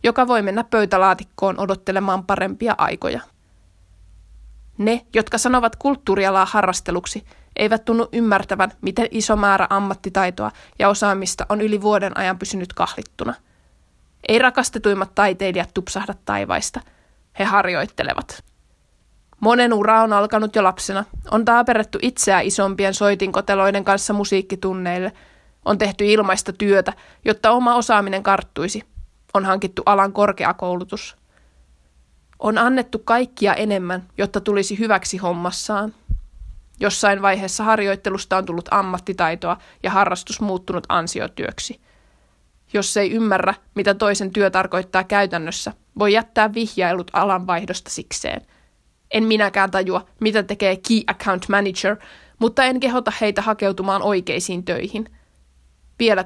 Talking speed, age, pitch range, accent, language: 115 wpm, 20-39, 185-215 Hz, native, Finnish